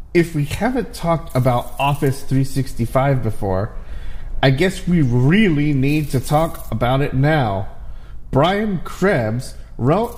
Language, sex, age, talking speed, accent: English, male, 30-49, 125 wpm, American